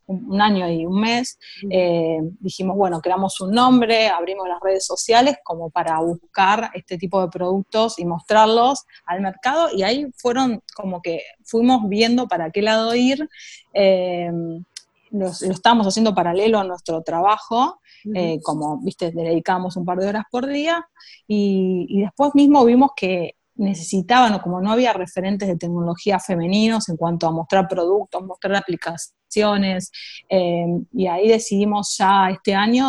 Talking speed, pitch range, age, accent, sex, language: 155 wpm, 180-220 Hz, 20-39, Argentinian, female, Spanish